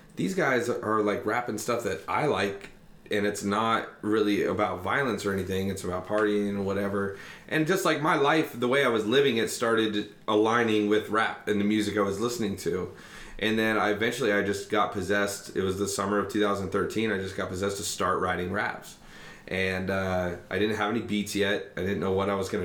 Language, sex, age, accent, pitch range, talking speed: English, male, 30-49, American, 95-110 Hz, 215 wpm